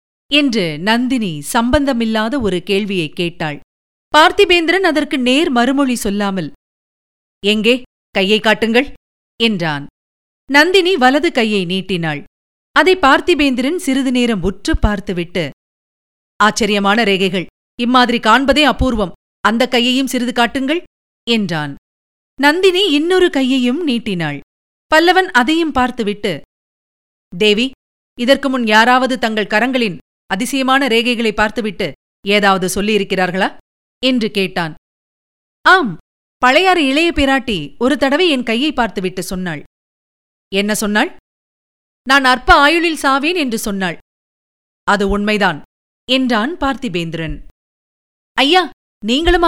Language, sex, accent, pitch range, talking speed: Tamil, female, native, 195-270 Hz, 90 wpm